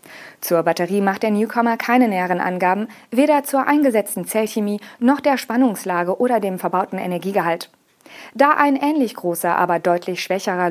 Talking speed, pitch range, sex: 145 wpm, 185-255 Hz, female